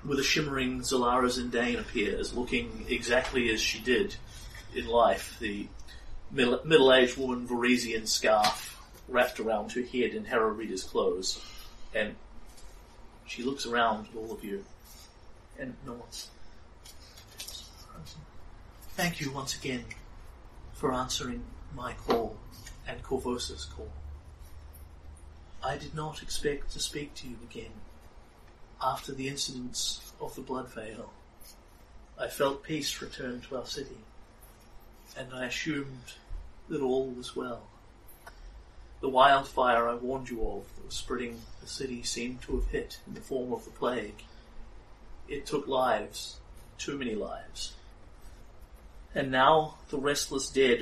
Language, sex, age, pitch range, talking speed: English, male, 40-59, 80-130 Hz, 130 wpm